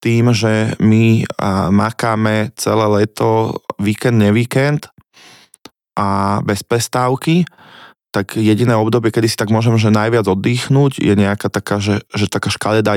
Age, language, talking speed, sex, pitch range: 20-39, Slovak, 130 wpm, male, 100-115 Hz